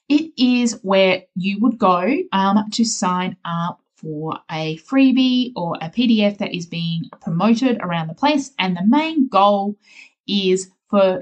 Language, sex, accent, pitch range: English, female, Australian, 180-240 Hz